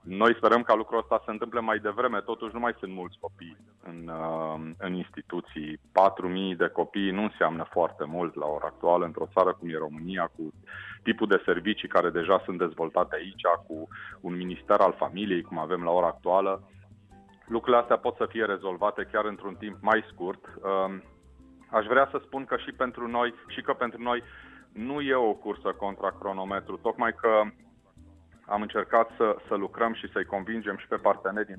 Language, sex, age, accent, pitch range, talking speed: Romanian, male, 30-49, native, 90-110 Hz, 180 wpm